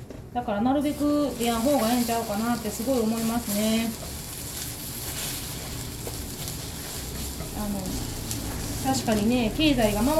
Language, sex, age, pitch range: Japanese, female, 20-39, 205-265 Hz